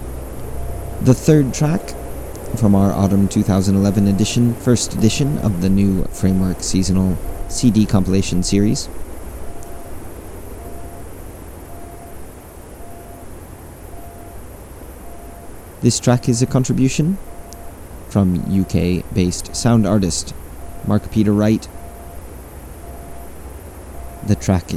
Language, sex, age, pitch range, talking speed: English, male, 30-49, 85-110 Hz, 80 wpm